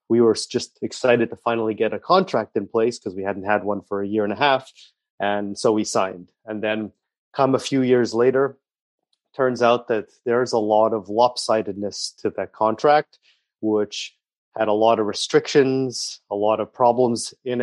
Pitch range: 105-125 Hz